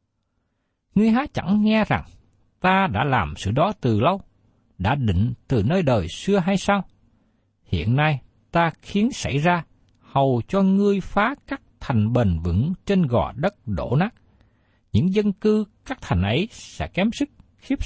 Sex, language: male, Vietnamese